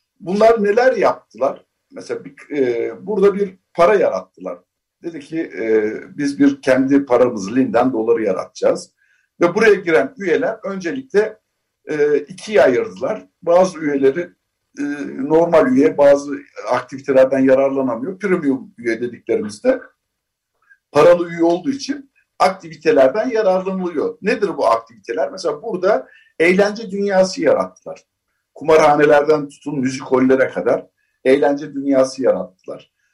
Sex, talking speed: male, 105 wpm